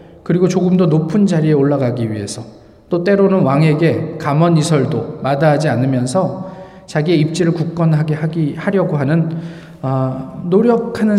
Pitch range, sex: 165-215 Hz, male